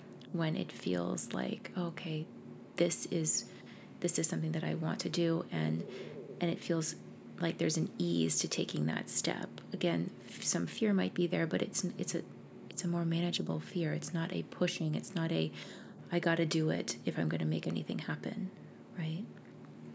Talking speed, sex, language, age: 190 wpm, female, English, 30-49